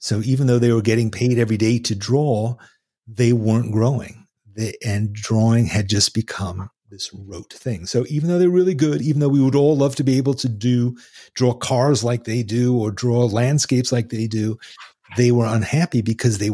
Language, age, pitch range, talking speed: English, 40-59, 105-130 Hz, 200 wpm